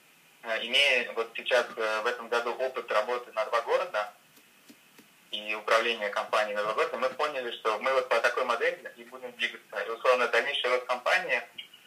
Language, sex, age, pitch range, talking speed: Amharic, male, 20-39, 105-125 Hz, 160 wpm